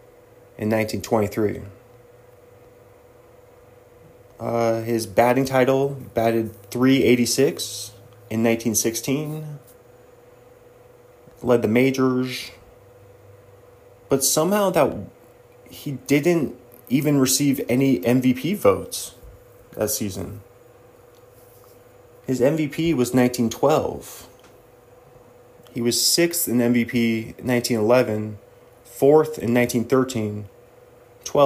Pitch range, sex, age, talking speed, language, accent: 115-130 Hz, male, 30-49, 70 wpm, English, American